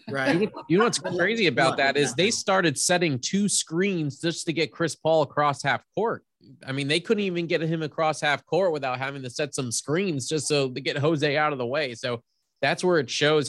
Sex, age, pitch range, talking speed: male, 20-39, 120-155 Hz, 225 wpm